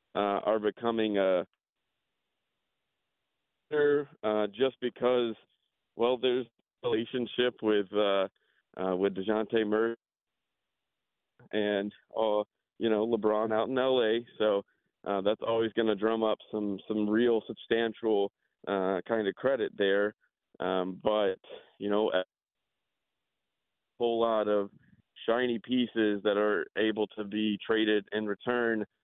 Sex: male